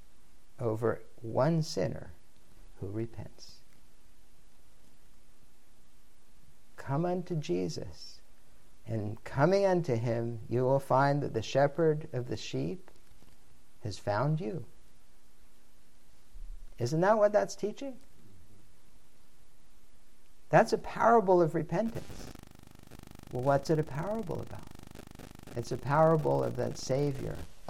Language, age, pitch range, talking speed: English, 60-79, 115-180 Hz, 100 wpm